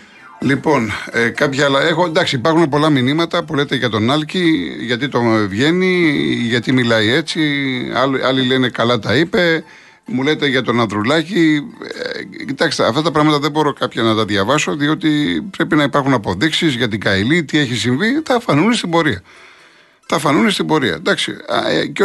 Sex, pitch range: male, 120-160 Hz